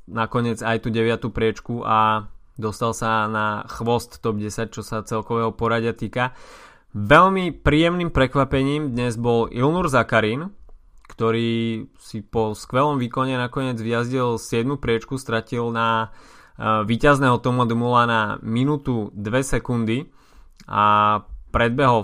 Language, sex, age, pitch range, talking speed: Slovak, male, 20-39, 110-125 Hz, 120 wpm